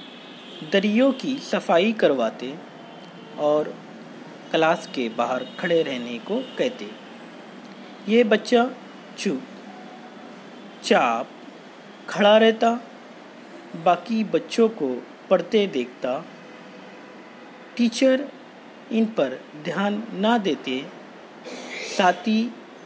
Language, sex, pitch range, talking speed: Hindi, male, 170-245 Hz, 80 wpm